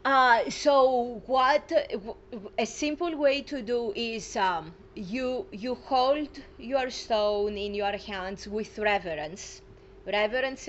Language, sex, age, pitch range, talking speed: English, female, 30-49, 200-250 Hz, 120 wpm